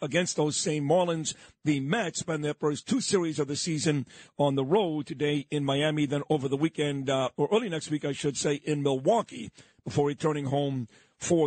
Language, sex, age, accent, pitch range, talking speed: English, male, 50-69, American, 150-180 Hz, 200 wpm